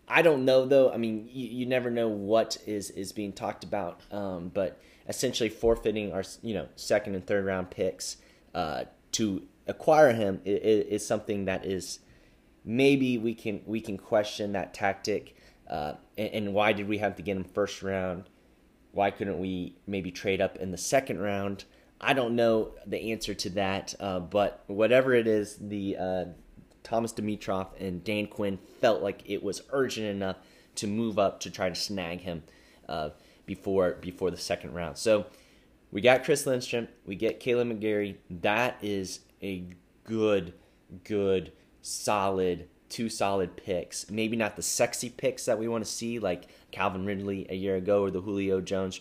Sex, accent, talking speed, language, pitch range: male, American, 175 wpm, English, 95-110 Hz